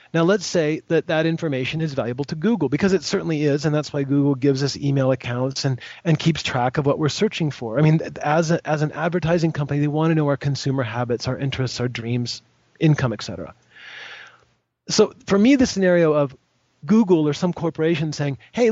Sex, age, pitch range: male, 40-59, 130-160 Hz